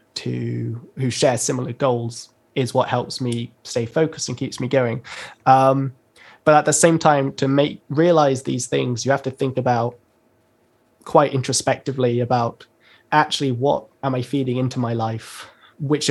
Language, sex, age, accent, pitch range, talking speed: English, male, 20-39, British, 120-135 Hz, 160 wpm